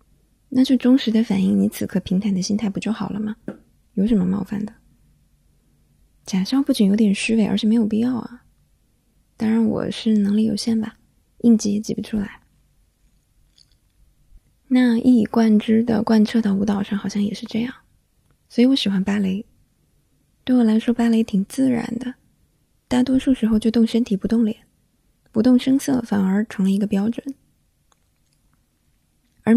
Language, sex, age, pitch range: Chinese, female, 20-39, 205-235 Hz